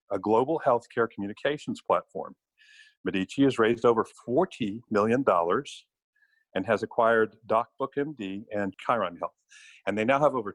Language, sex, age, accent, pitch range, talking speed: English, male, 50-69, American, 100-135 Hz, 130 wpm